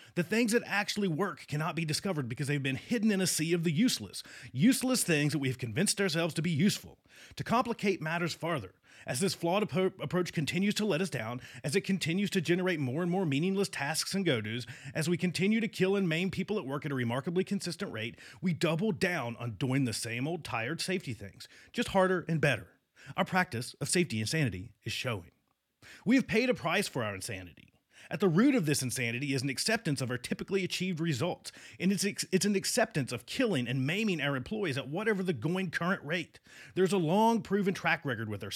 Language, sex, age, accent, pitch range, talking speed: English, male, 30-49, American, 130-195 Hz, 215 wpm